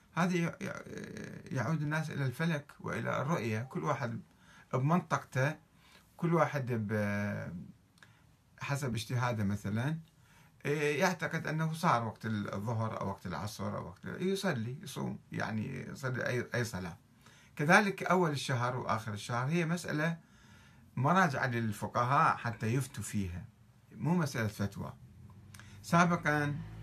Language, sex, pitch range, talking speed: Arabic, male, 105-150 Hz, 105 wpm